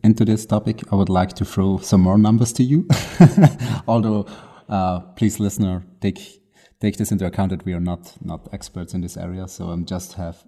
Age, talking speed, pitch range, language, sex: 30-49, 200 wpm, 95-110 Hz, English, male